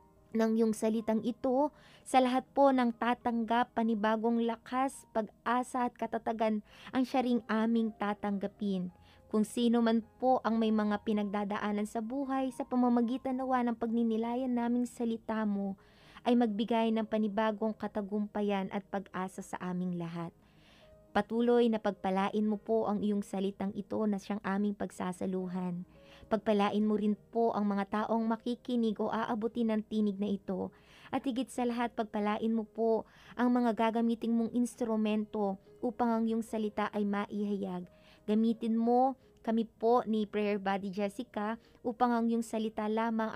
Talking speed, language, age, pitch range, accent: 145 wpm, Filipino, 20-39, 205-235 Hz, native